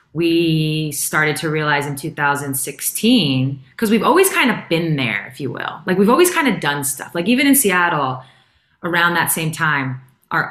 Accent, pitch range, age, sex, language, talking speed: American, 130-165 Hz, 20-39, female, English, 185 wpm